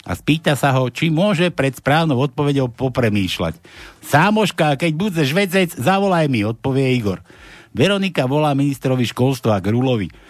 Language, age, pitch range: Slovak, 60-79, 120-160 Hz